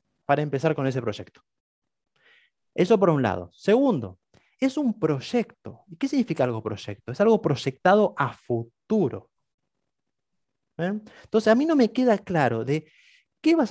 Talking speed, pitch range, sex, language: 150 wpm, 130-215 Hz, male, Spanish